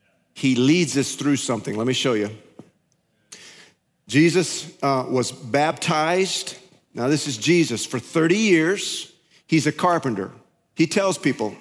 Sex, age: male, 40-59